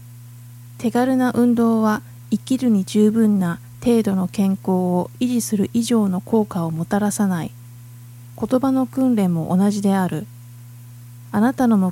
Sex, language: female, Japanese